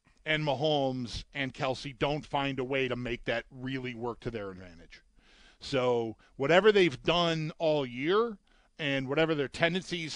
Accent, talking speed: American, 155 wpm